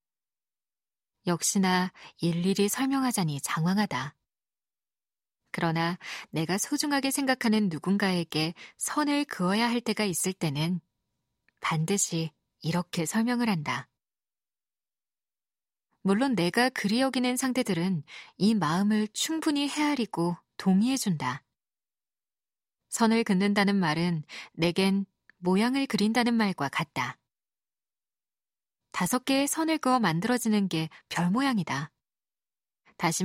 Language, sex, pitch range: Korean, female, 170-240 Hz